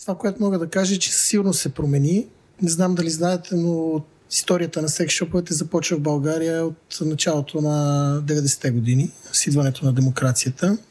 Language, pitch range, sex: Bulgarian, 150-190 Hz, male